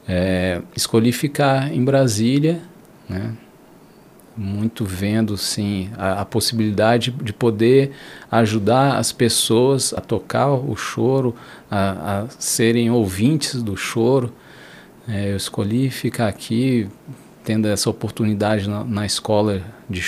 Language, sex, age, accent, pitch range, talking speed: Portuguese, male, 50-69, Brazilian, 110-140 Hz, 115 wpm